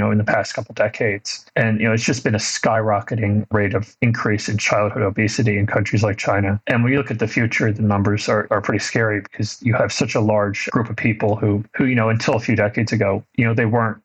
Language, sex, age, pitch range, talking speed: English, male, 30-49, 105-120 Hz, 255 wpm